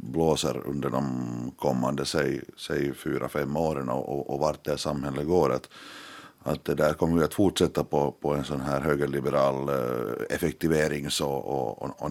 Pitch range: 70-85 Hz